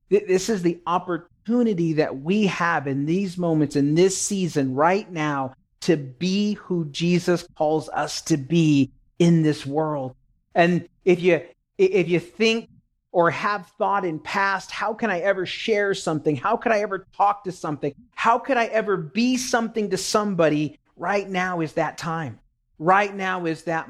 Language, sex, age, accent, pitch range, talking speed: English, male, 40-59, American, 155-200 Hz, 170 wpm